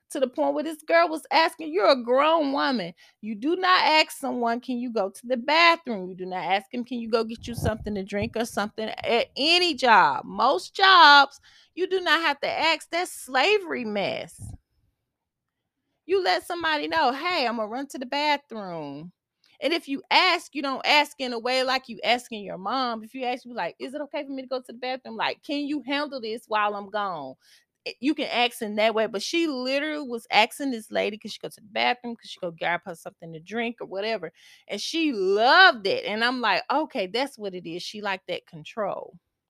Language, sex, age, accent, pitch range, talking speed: English, female, 20-39, American, 200-295 Hz, 220 wpm